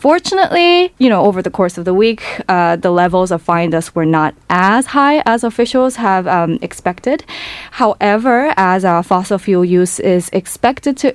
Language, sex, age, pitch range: Korean, female, 20-39, 175-240 Hz